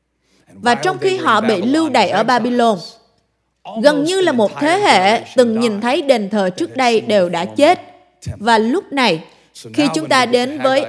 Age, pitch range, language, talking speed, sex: 20-39, 215-295 Hz, Vietnamese, 180 wpm, female